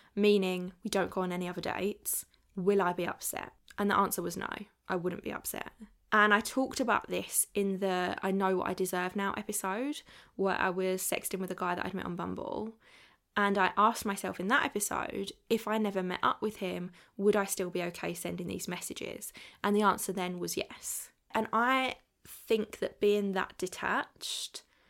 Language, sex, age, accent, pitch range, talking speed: English, female, 10-29, British, 190-220 Hz, 200 wpm